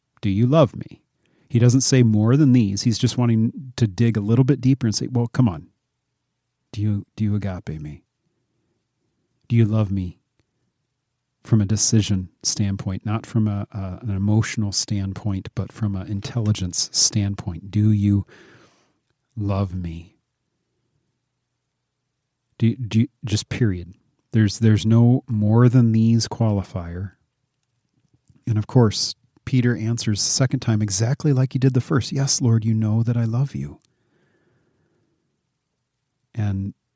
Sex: male